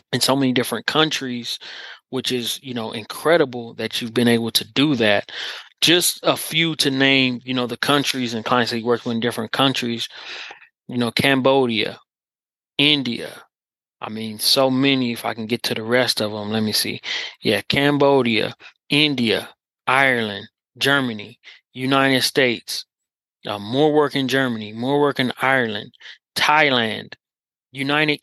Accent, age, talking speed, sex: American, 20-39, 155 wpm, male